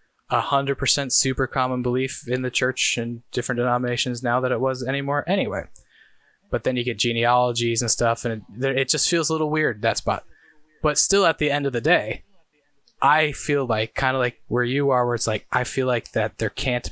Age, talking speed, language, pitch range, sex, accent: 20-39, 215 wpm, English, 115-135 Hz, male, American